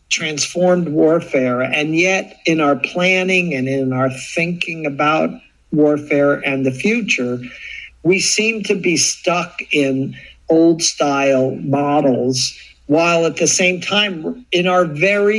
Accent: American